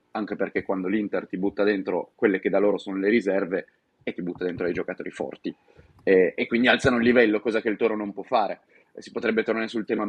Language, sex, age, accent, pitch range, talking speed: Italian, male, 30-49, native, 100-120 Hz, 230 wpm